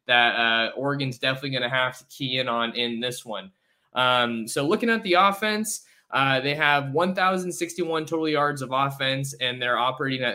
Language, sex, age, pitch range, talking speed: English, male, 20-39, 125-155 Hz, 185 wpm